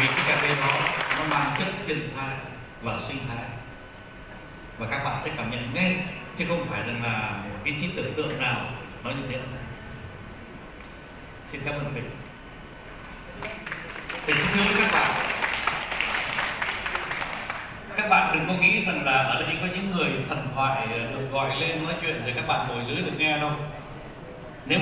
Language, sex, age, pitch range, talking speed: Vietnamese, male, 60-79, 130-170 Hz, 175 wpm